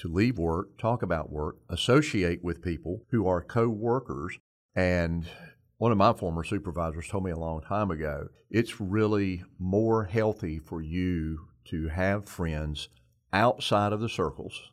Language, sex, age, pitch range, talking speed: English, male, 40-59, 85-105 Hz, 150 wpm